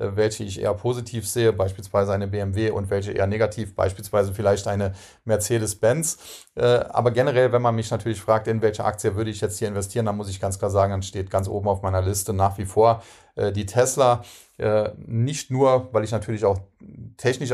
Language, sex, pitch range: German, male, 100-115 Hz